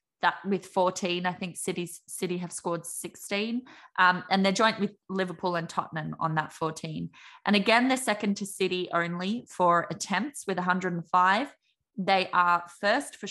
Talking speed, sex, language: 160 wpm, female, English